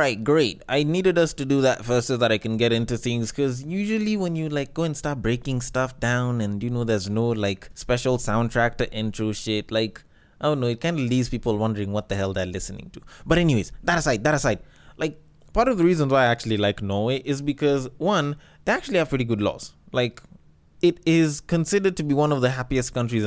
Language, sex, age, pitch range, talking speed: English, male, 20-39, 120-160 Hz, 230 wpm